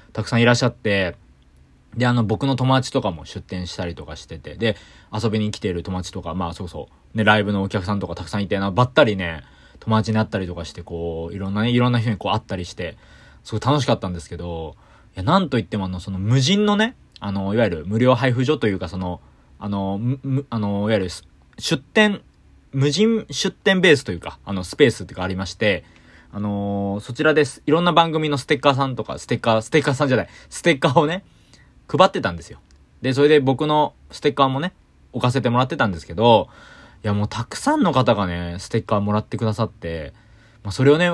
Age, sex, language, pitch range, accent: 20-39, male, Japanese, 95-135 Hz, native